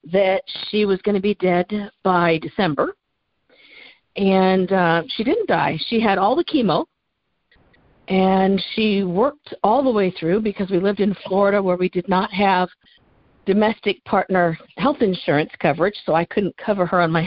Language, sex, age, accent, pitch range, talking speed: English, female, 50-69, American, 165-210 Hz, 165 wpm